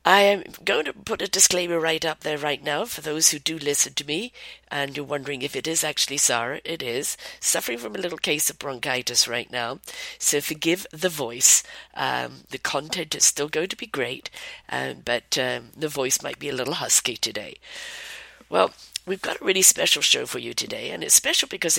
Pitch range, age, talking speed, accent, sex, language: 130-170 Hz, 50-69, 210 wpm, British, female, English